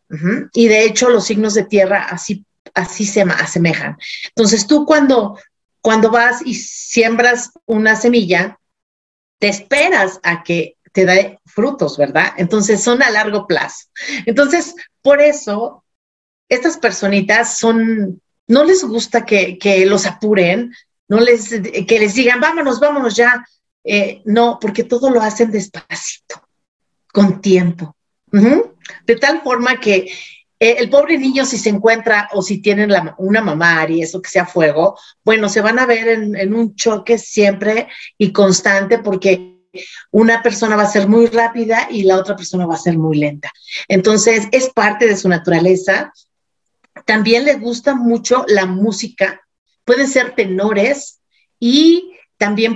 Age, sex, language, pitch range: 40-59, female, Spanish, 195-240 Hz